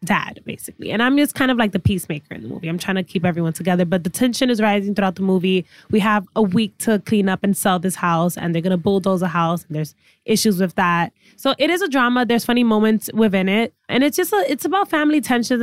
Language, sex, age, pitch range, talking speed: English, female, 10-29, 190-235 Hz, 255 wpm